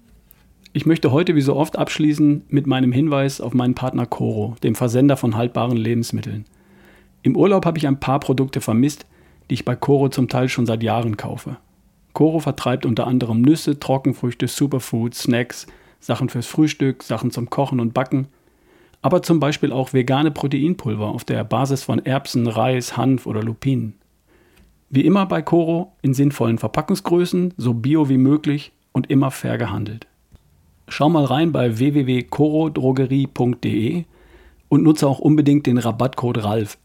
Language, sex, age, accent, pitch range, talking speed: German, male, 40-59, German, 120-145 Hz, 155 wpm